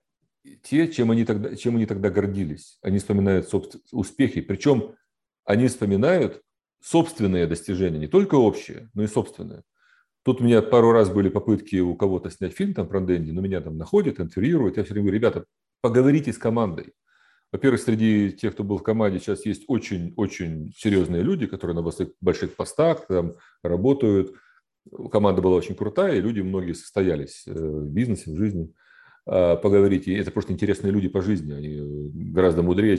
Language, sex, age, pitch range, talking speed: Russian, male, 40-59, 95-115 Hz, 160 wpm